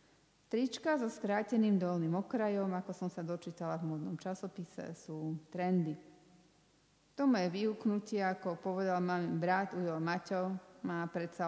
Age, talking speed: 40-59, 130 wpm